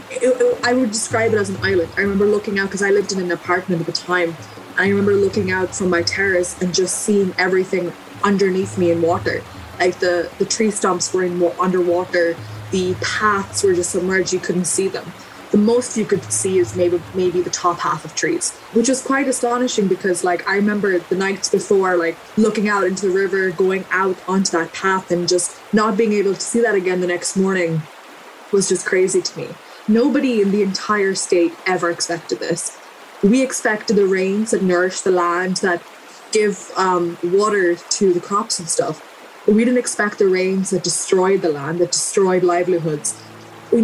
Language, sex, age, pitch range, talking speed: English, female, 20-39, 180-210 Hz, 195 wpm